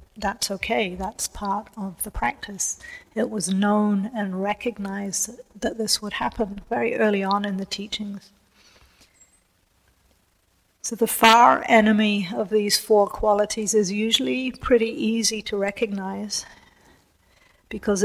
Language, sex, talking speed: English, female, 125 wpm